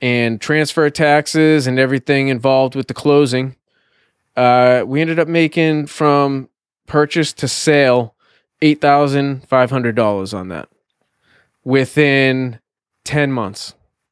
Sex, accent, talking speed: male, American, 100 wpm